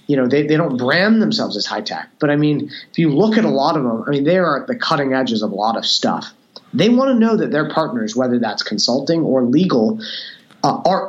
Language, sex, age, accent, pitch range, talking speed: English, male, 30-49, American, 135-195 Hz, 260 wpm